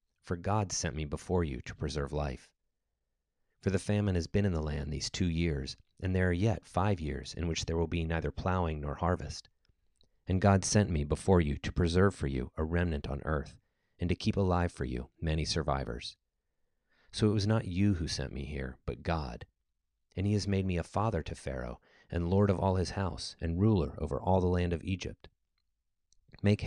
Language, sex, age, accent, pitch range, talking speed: English, male, 40-59, American, 75-95 Hz, 205 wpm